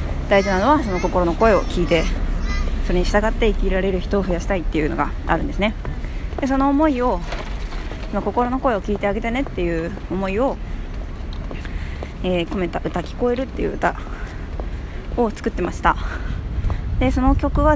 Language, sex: Japanese, female